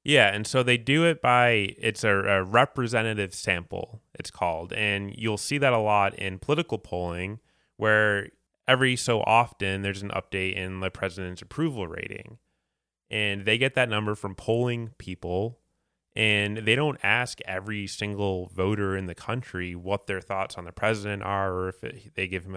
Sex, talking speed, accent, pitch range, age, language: male, 170 wpm, American, 95-110 Hz, 20-39, English